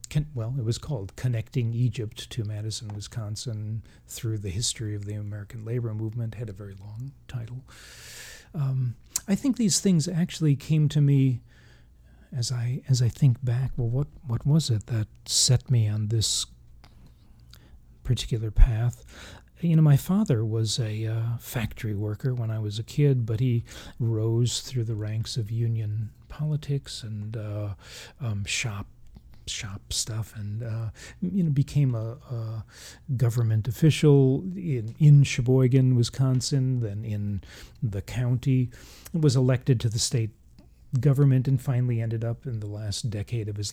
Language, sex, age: English, male, 40-59